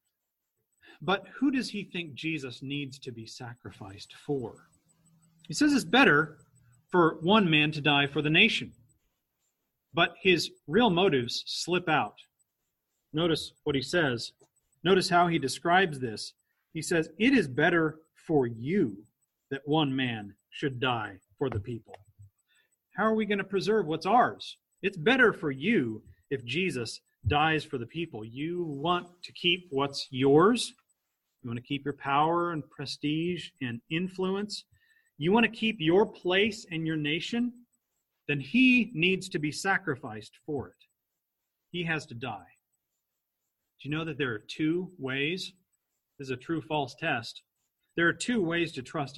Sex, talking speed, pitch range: male, 155 wpm, 135-185 Hz